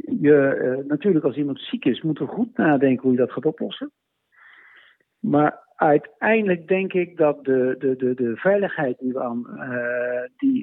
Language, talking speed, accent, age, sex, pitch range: Dutch, 145 wpm, Dutch, 60-79, male, 135-195 Hz